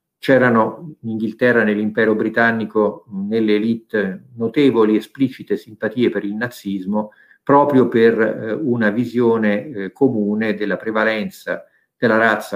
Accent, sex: native, male